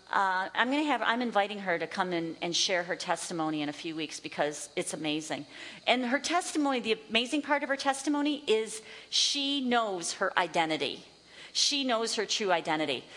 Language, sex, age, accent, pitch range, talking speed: English, female, 40-59, American, 190-275 Hz, 185 wpm